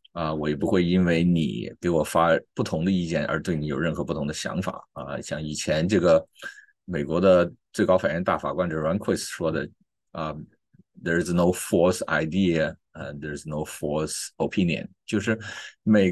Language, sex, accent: Chinese, male, native